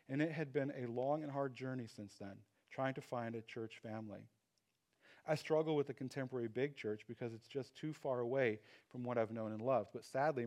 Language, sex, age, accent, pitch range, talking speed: English, male, 40-59, American, 110-135 Hz, 220 wpm